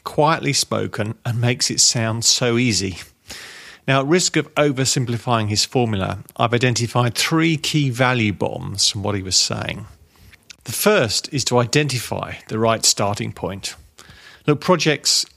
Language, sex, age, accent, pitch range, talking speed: English, male, 40-59, British, 105-130 Hz, 145 wpm